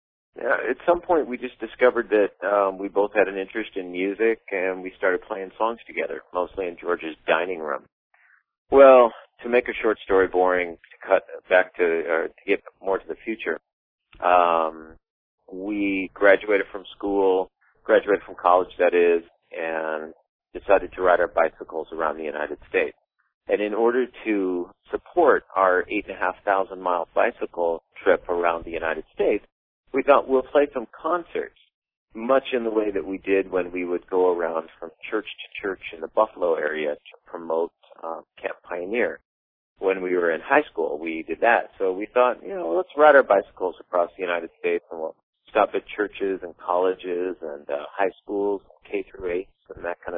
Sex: male